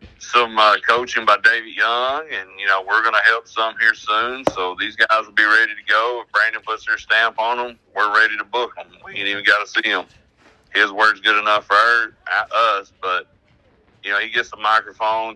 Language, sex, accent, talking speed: English, male, American, 225 wpm